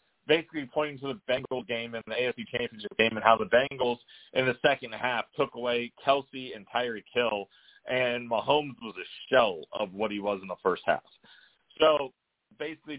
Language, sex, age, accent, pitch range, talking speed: English, male, 40-59, American, 110-140 Hz, 185 wpm